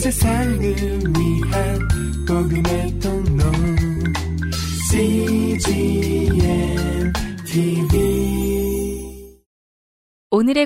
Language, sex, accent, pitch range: Korean, female, native, 145-215 Hz